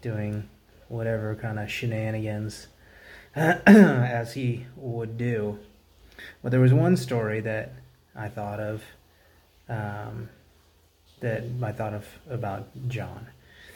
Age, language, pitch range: 30-49, English, 105-125 Hz